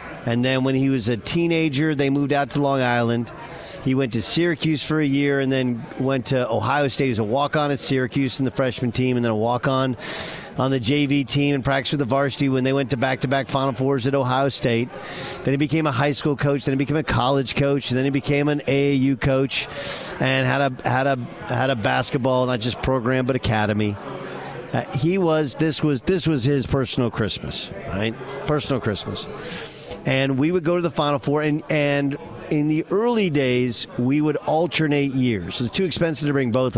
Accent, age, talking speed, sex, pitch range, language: American, 50-69, 210 wpm, male, 125-145 Hz, English